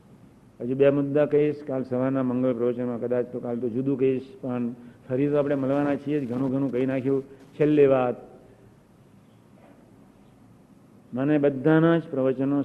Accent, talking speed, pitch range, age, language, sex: native, 145 wpm, 130-165 Hz, 50-69, Gujarati, male